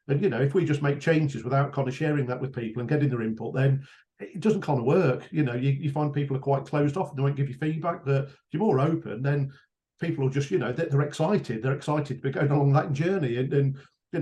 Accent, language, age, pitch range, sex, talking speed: British, English, 40-59, 130-155 Hz, male, 275 wpm